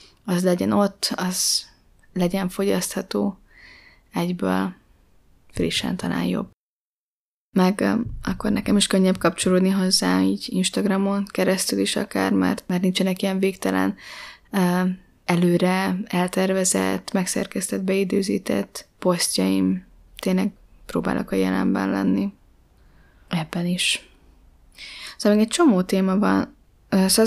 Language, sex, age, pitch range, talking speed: Hungarian, female, 20-39, 170-195 Hz, 100 wpm